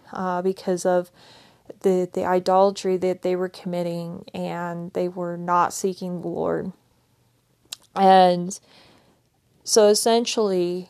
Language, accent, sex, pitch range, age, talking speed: English, American, female, 180-195 Hz, 30-49, 115 wpm